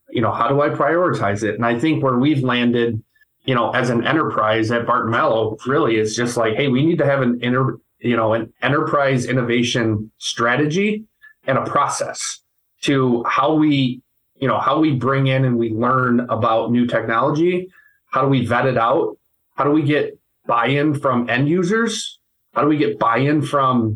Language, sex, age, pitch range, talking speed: English, male, 20-39, 115-145 Hz, 190 wpm